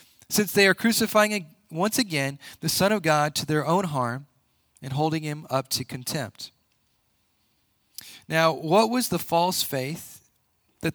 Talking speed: 150 wpm